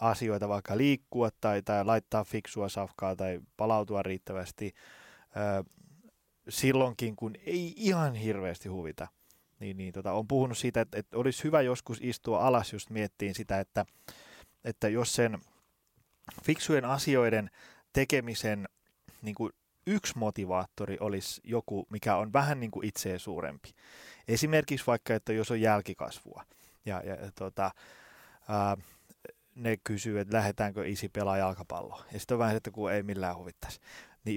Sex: male